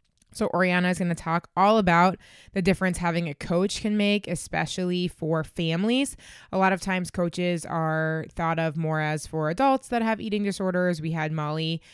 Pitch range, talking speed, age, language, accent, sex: 165-195 Hz, 185 wpm, 20-39, English, American, female